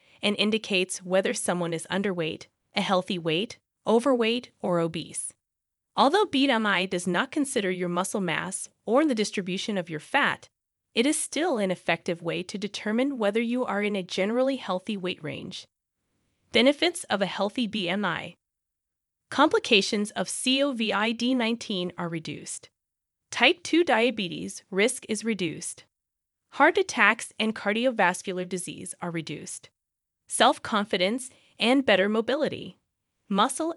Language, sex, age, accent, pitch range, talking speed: English, female, 20-39, American, 185-260 Hz, 130 wpm